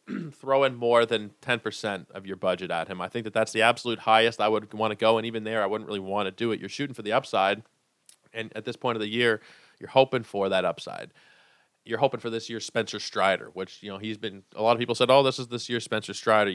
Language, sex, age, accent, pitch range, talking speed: English, male, 20-39, American, 105-125 Hz, 265 wpm